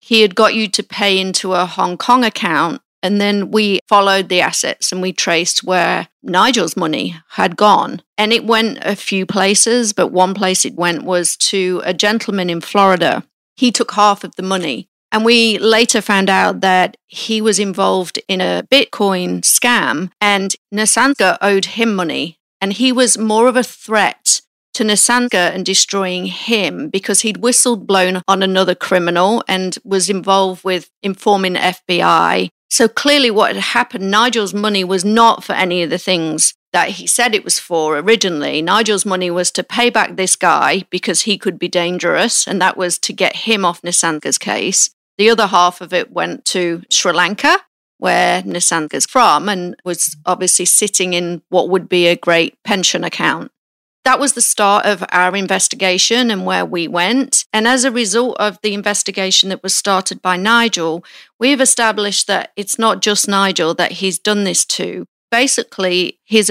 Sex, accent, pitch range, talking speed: female, British, 180-220 Hz, 175 wpm